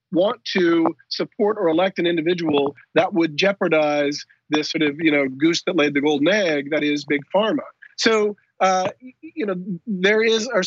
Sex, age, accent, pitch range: male, 40-59, American, 160-215 Hz